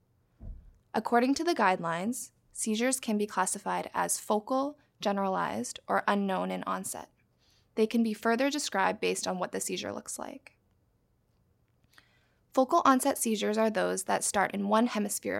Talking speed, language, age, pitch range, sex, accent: 145 wpm, English, 20-39, 200-245 Hz, female, American